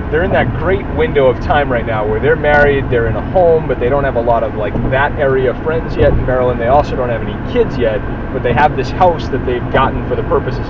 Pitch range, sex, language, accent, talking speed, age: 115-135 Hz, male, English, American, 270 wpm, 30-49